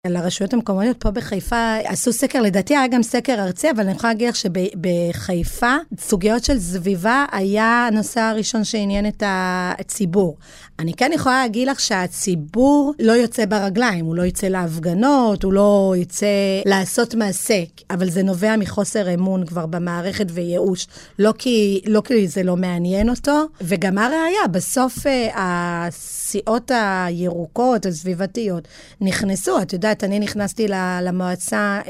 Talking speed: 135 wpm